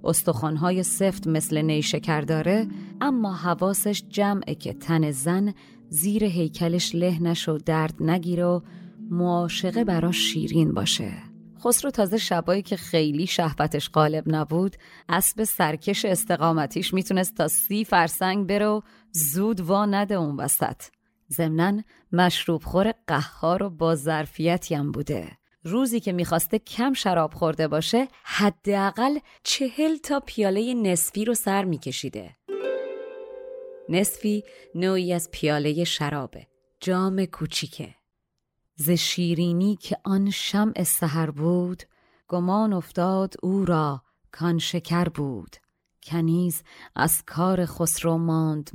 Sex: female